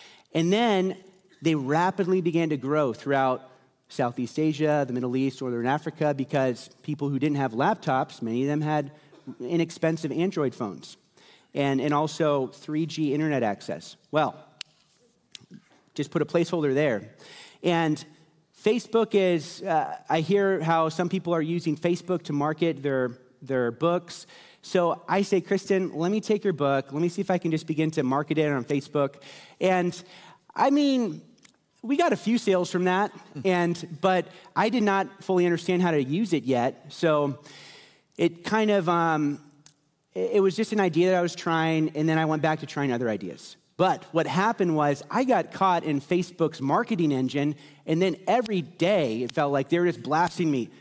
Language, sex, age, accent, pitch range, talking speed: English, male, 30-49, American, 145-195 Hz, 175 wpm